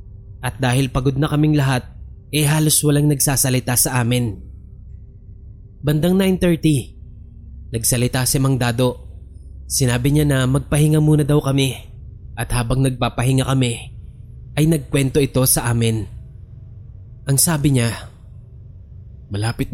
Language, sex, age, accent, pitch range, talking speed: English, male, 20-39, Filipino, 105-145 Hz, 115 wpm